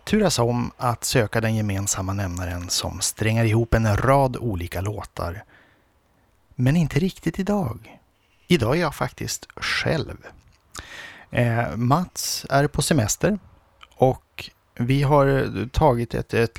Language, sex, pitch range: Swedish, male, 105-130 Hz